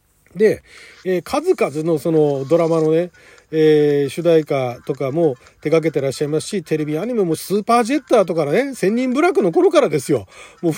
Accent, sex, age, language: native, male, 40-59, Japanese